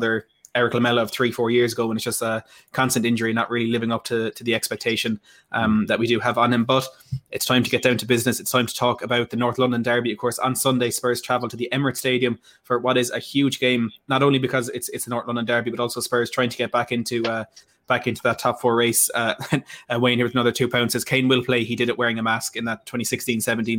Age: 20-39